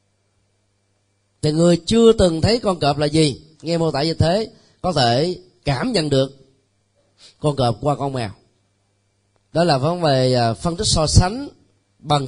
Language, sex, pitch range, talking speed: Vietnamese, male, 100-155 Hz, 160 wpm